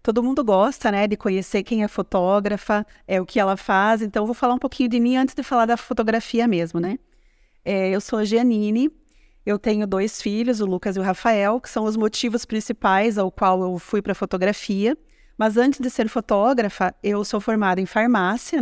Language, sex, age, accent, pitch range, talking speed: Portuguese, female, 30-49, Brazilian, 200-240 Hz, 205 wpm